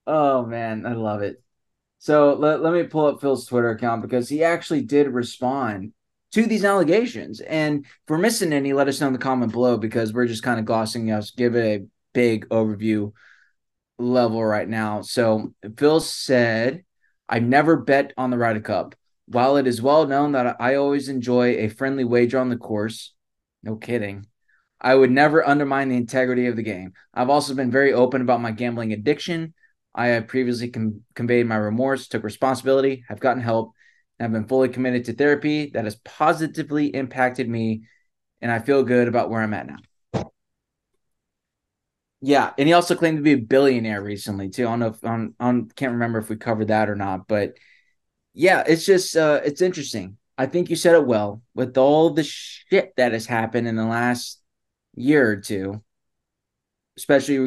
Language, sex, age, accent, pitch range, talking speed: English, male, 20-39, American, 115-140 Hz, 185 wpm